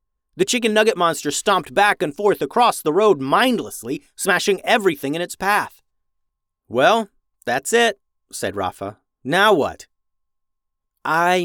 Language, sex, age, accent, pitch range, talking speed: English, male, 30-49, American, 135-195 Hz, 130 wpm